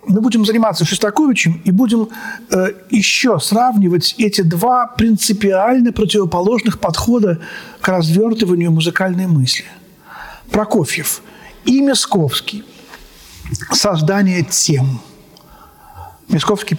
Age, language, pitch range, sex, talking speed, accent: 50-69, Russian, 170-225 Hz, male, 85 wpm, native